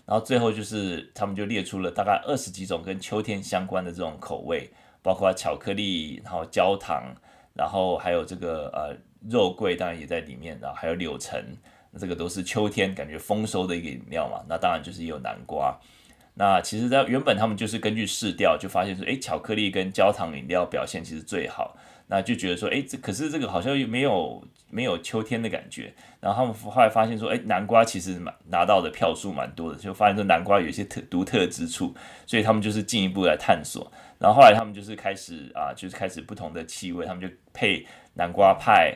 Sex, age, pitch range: male, 20-39, 90-110 Hz